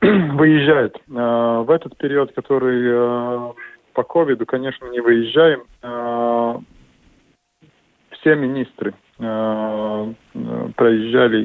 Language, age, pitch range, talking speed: Russian, 20-39, 110-130 Hz, 90 wpm